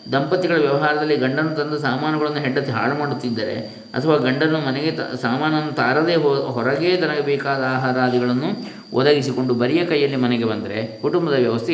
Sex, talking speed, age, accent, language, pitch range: male, 130 wpm, 20-39, native, Kannada, 120-145 Hz